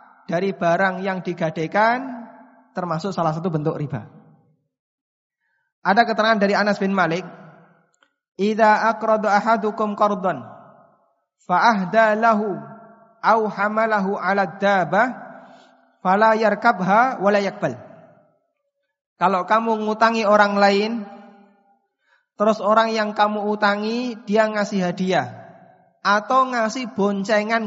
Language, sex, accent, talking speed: Indonesian, male, native, 95 wpm